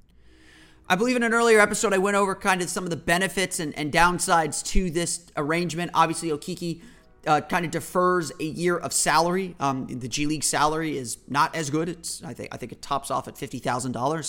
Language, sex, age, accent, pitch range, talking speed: English, male, 30-49, American, 155-195 Hz, 220 wpm